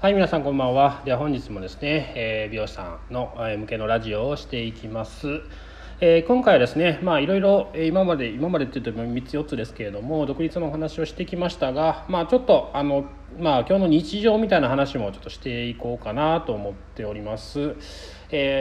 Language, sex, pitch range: Japanese, male, 100-165 Hz